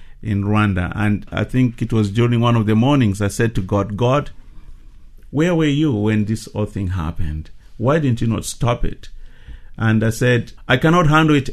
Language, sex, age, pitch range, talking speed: English, male, 50-69, 95-125 Hz, 200 wpm